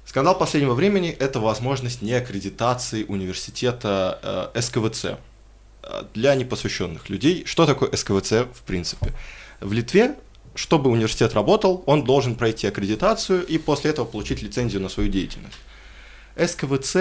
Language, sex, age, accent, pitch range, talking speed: Russian, male, 20-39, native, 105-135 Hz, 125 wpm